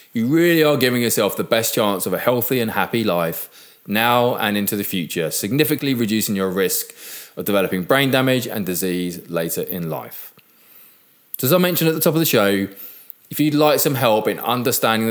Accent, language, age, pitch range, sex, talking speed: British, English, 20-39, 100-140 Hz, male, 195 wpm